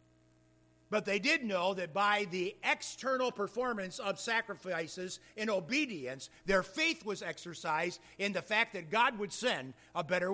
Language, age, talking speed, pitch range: English, 50-69, 150 wpm, 150-210 Hz